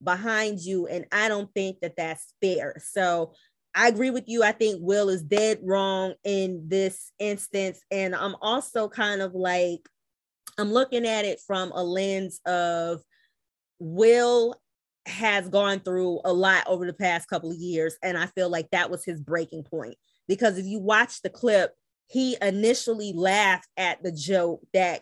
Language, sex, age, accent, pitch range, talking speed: English, female, 20-39, American, 175-215 Hz, 170 wpm